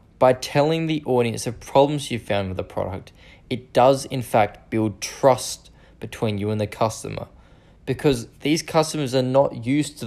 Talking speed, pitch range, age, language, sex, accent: 175 wpm, 100-130 Hz, 20-39, English, male, Australian